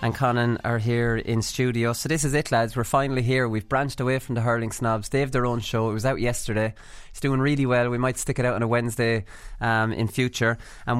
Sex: male